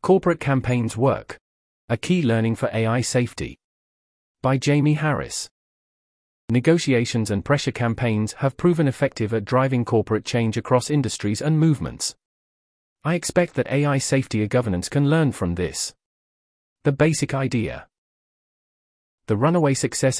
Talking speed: 130 wpm